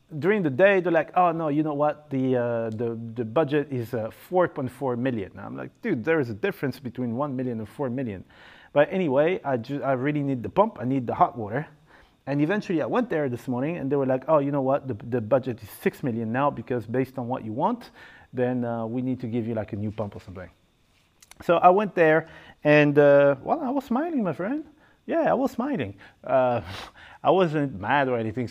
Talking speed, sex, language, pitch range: 230 wpm, male, English, 115-170 Hz